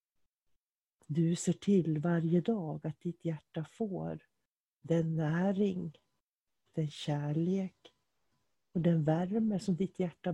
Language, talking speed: English, 110 wpm